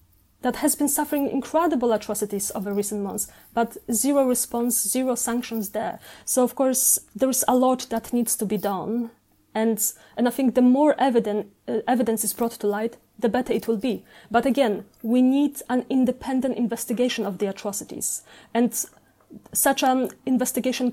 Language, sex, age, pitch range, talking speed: English, female, 20-39, 220-255 Hz, 165 wpm